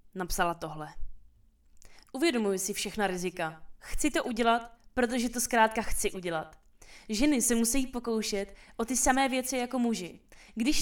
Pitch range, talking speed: 170-240 Hz, 140 wpm